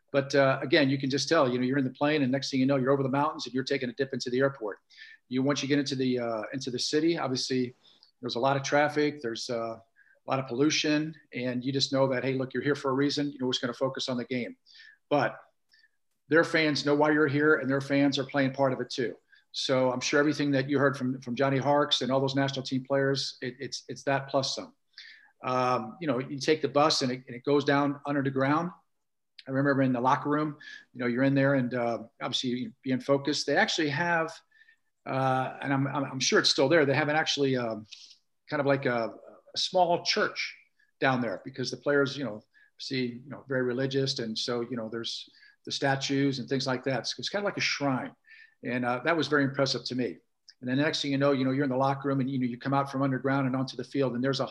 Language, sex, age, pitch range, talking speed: English, male, 50-69, 130-145 Hz, 260 wpm